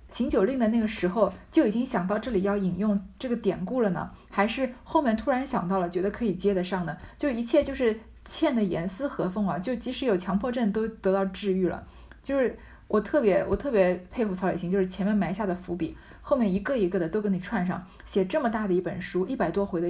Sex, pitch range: female, 180-230 Hz